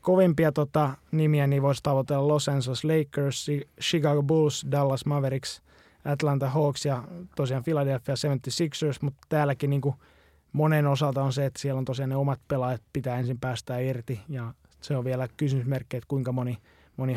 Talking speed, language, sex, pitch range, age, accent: 160 wpm, Finnish, male, 130-145 Hz, 20-39, native